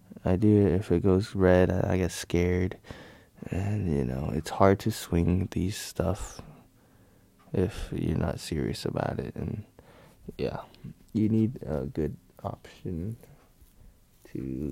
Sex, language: male, English